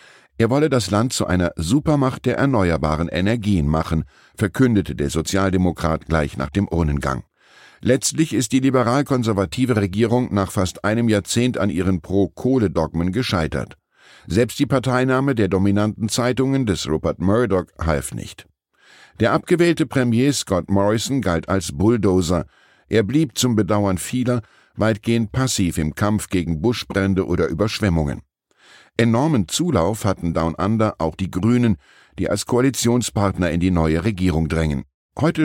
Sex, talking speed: male, 135 wpm